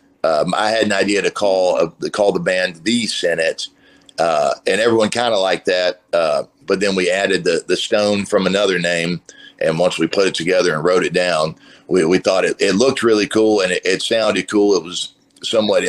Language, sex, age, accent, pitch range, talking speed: English, male, 40-59, American, 90-100 Hz, 220 wpm